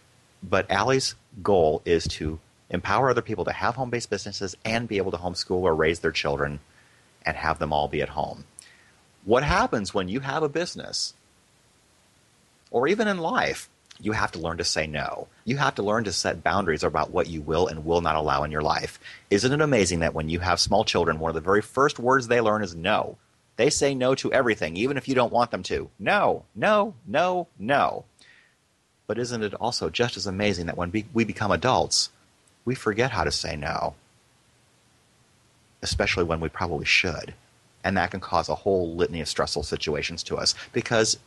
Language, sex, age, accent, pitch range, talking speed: English, male, 30-49, American, 80-120 Hz, 195 wpm